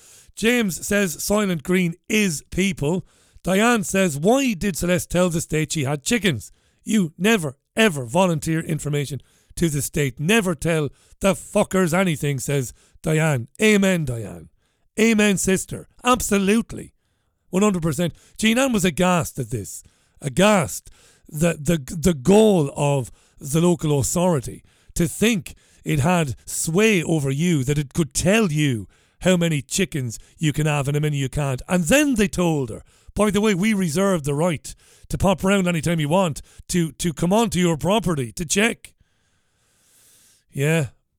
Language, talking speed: English, 150 wpm